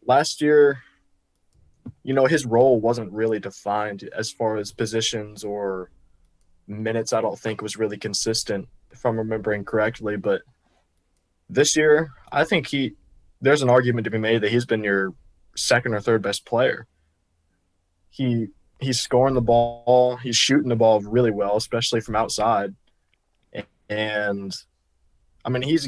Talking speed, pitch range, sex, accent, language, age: 150 wpm, 100-120 Hz, male, American, English, 20-39